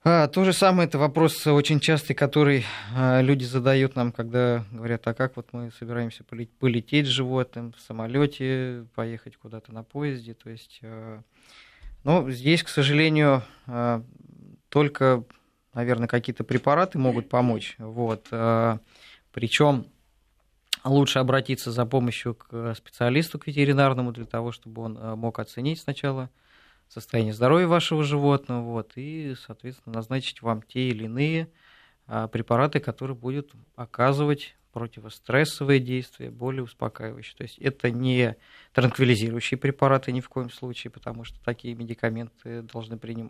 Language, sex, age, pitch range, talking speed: Russian, male, 20-39, 115-140 Hz, 125 wpm